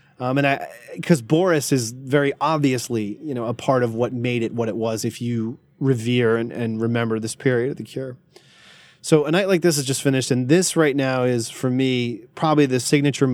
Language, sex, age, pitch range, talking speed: English, male, 30-49, 120-145 Hz, 215 wpm